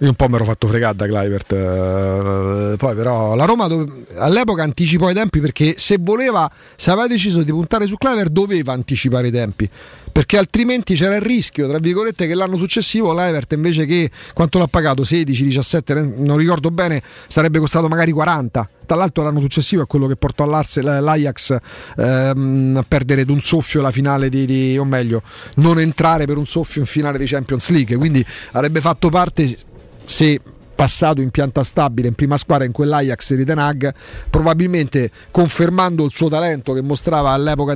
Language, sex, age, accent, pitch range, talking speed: Italian, male, 40-59, native, 130-165 Hz, 175 wpm